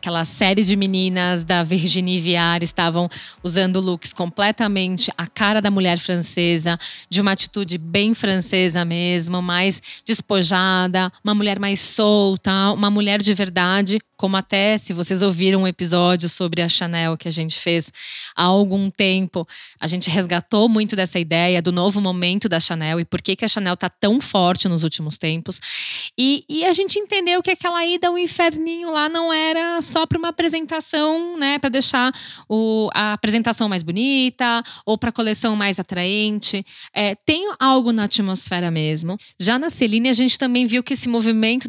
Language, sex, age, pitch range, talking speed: Portuguese, female, 10-29, 180-235 Hz, 170 wpm